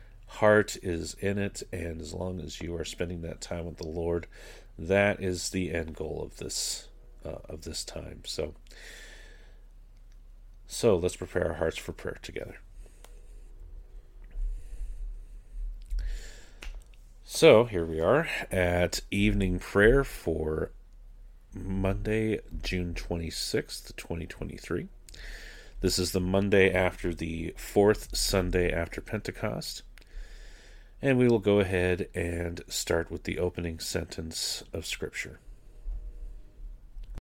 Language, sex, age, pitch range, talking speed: English, male, 40-59, 85-100 Hz, 115 wpm